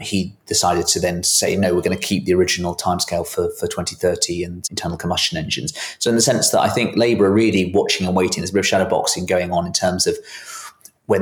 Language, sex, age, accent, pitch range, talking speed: English, male, 20-39, British, 90-105 Hz, 240 wpm